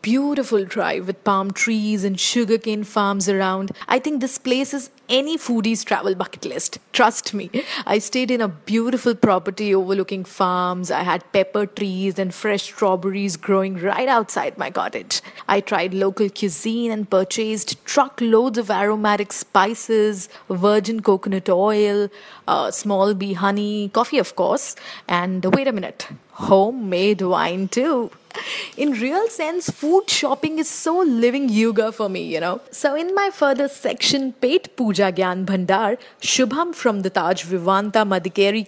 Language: English